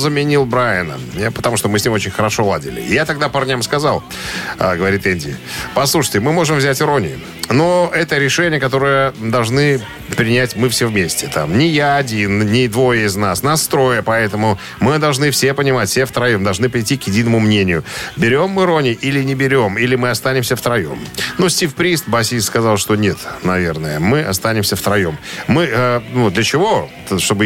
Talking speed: 175 wpm